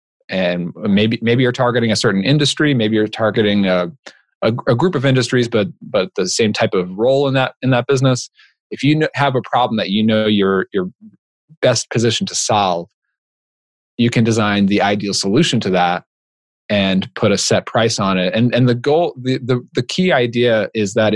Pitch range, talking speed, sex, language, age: 105-140 Hz, 200 wpm, male, English, 30-49